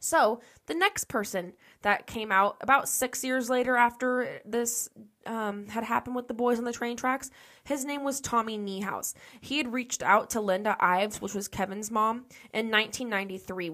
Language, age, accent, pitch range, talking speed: English, 10-29, American, 190-230 Hz, 180 wpm